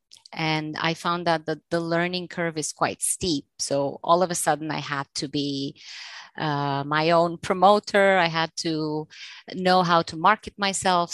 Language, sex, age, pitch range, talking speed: English, female, 30-49, 155-190 Hz, 170 wpm